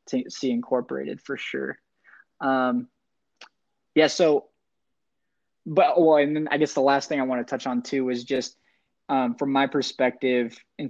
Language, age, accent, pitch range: English, 20-39, American, 125-140 Hz